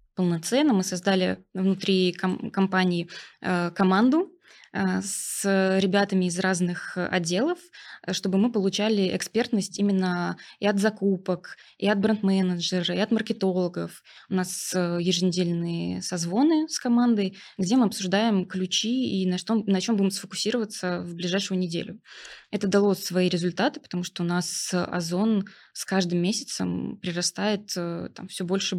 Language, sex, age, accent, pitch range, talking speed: Russian, female, 20-39, native, 180-210 Hz, 125 wpm